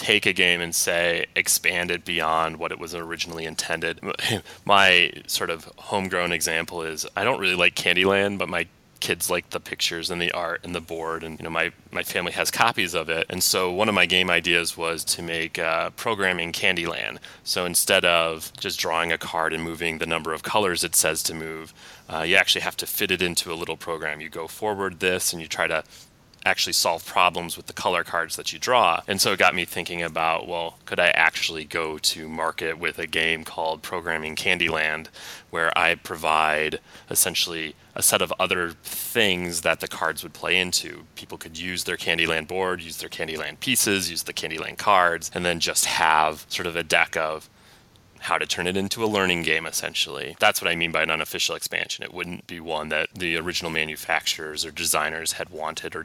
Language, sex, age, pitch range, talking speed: English, male, 30-49, 80-90 Hz, 205 wpm